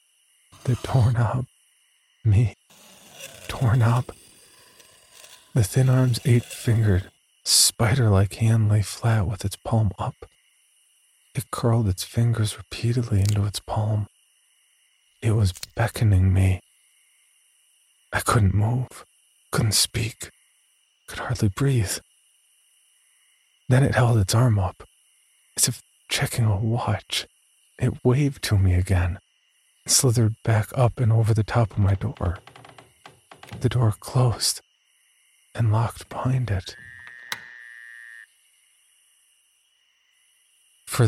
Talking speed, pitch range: 105 wpm, 100-125 Hz